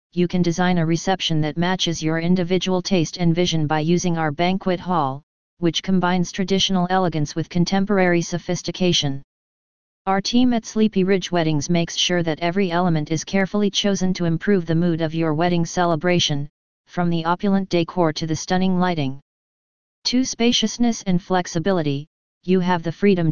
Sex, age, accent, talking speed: female, 40-59, American, 160 wpm